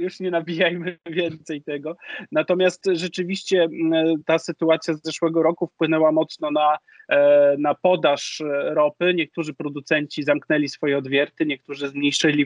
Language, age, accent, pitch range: Polish, 30-49, native, 150-185 Hz